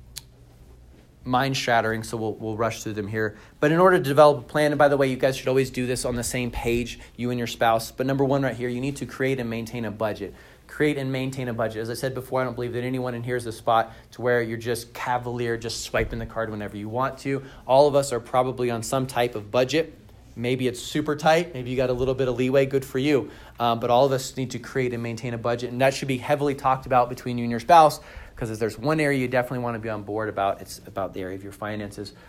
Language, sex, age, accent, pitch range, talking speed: English, male, 30-49, American, 115-135 Hz, 275 wpm